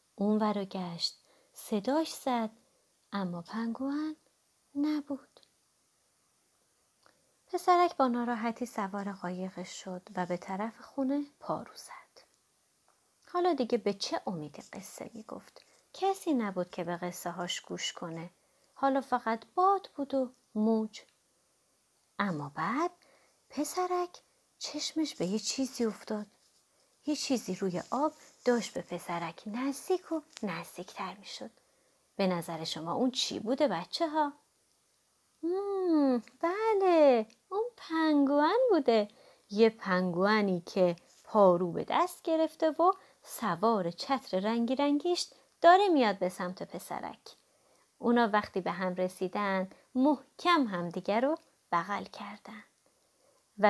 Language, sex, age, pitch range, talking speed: Persian, female, 30-49, 195-300 Hz, 115 wpm